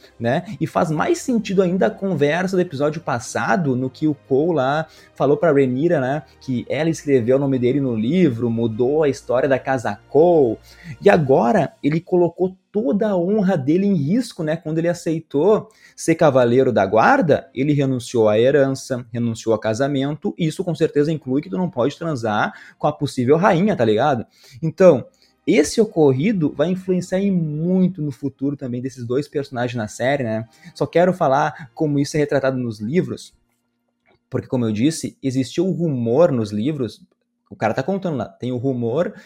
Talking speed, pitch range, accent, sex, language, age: 175 wpm, 130-175 Hz, Brazilian, male, Portuguese, 20-39